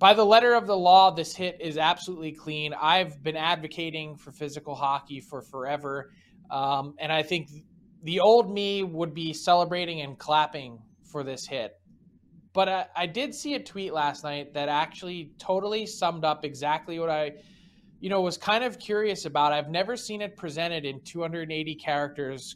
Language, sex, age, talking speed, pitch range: English, male, 20-39, 175 wpm, 150-195 Hz